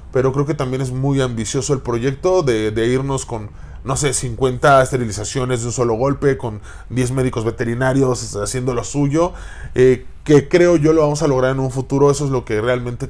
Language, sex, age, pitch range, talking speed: Spanish, male, 20-39, 120-145 Hz, 200 wpm